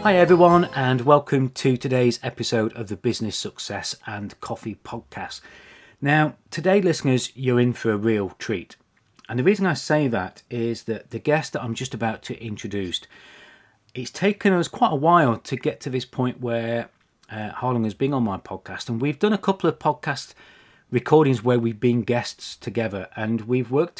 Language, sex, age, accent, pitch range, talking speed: English, male, 30-49, British, 115-150 Hz, 185 wpm